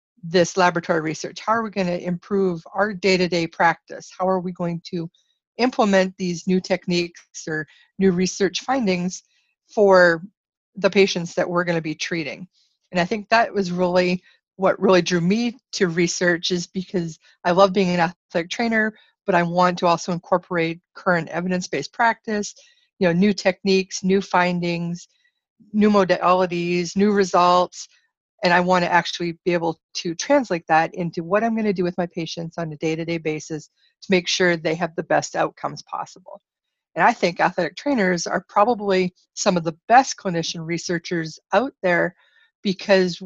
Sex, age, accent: female, 40-59, American